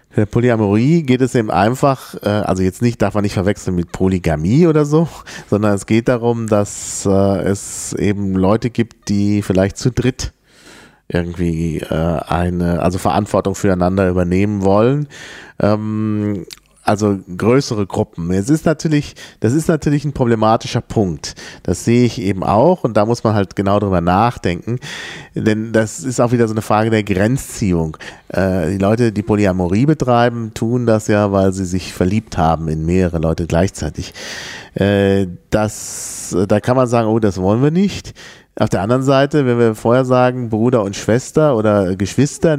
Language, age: German, 40-59